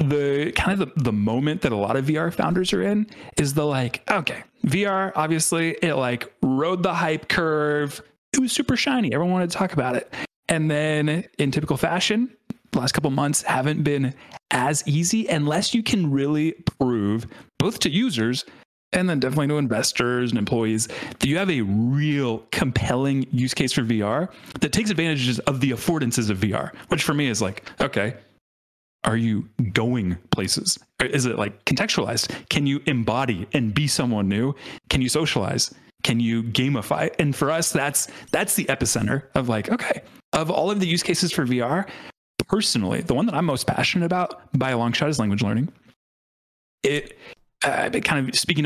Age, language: 30-49, English